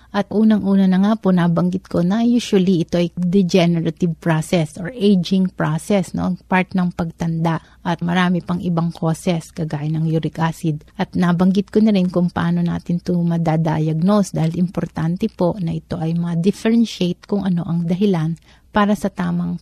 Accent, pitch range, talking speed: native, 170-195 Hz, 160 wpm